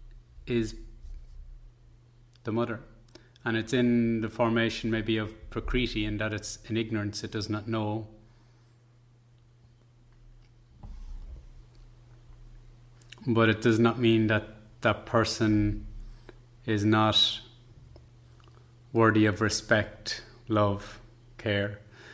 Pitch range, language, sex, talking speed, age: 110-120 Hz, English, male, 95 wpm, 30-49